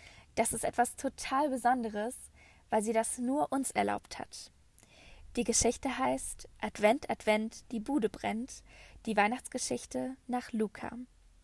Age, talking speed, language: 10-29, 125 wpm, German